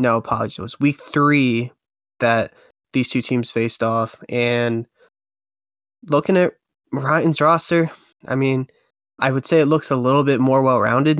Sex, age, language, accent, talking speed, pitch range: male, 10-29, English, American, 155 wpm, 120-135 Hz